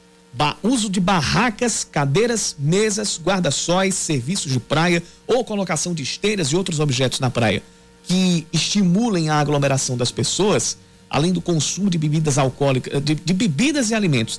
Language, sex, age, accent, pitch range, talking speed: Portuguese, male, 50-69, Brazilian, 145-185 Hz, 150 wpm